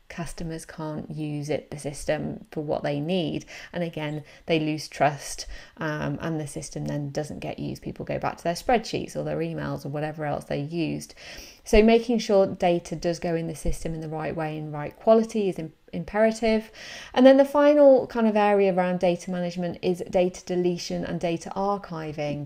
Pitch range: 160-195 Hz